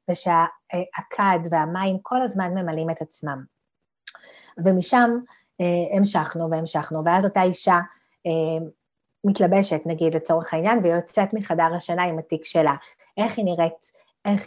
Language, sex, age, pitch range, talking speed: Hebrew, female, 30-49, 165-195 Hz, 125 wpm